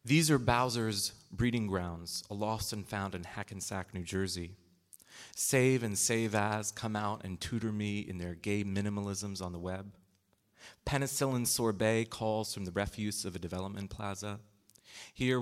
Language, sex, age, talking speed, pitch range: English, male, 30-49, 155 wpm, 95-110 Hz